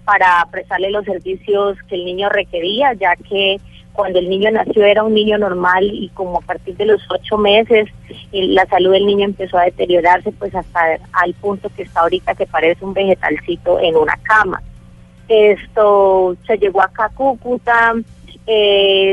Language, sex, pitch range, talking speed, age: Spanish, female, 180-215 Hz, 165 wpm, 30-49